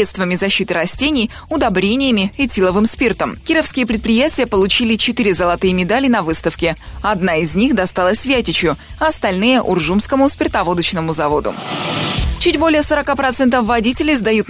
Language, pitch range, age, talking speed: Russian, 185-245 Hz, 20-39, 130 wpm